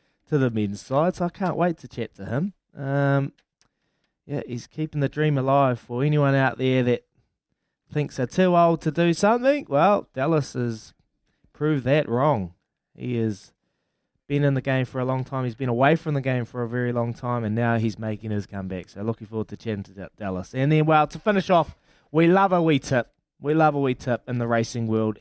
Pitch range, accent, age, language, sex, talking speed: 120-170 Hz, Australian, 20-39, English, male, 215 wpm